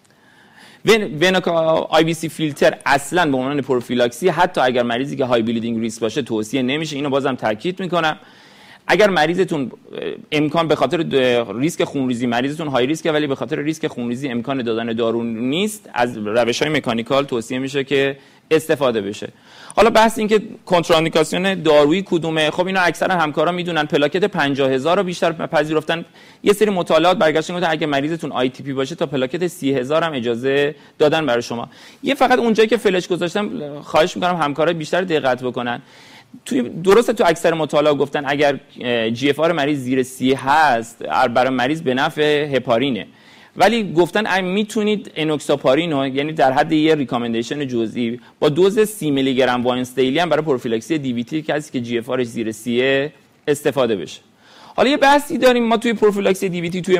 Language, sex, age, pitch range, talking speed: Persian, male, 40-59, 130-175 Hz, 160 wpm